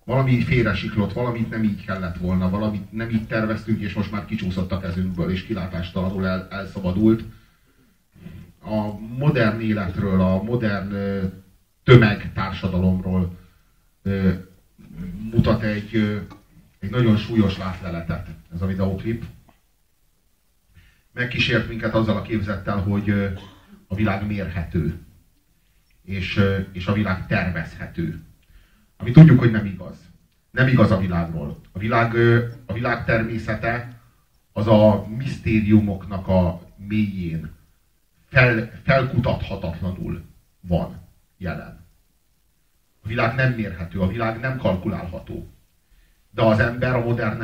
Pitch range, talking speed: 90-110 Hz, 115 wpm